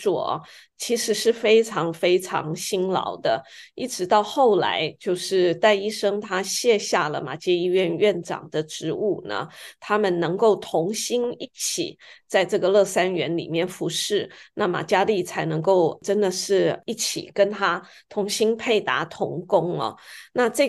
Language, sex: Chinese, female